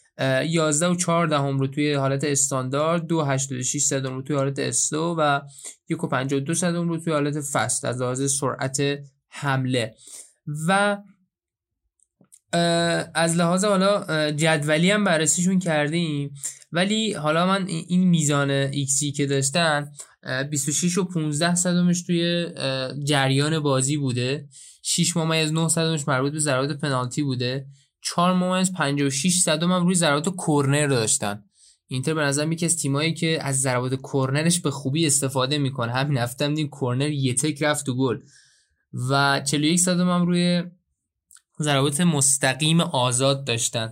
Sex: male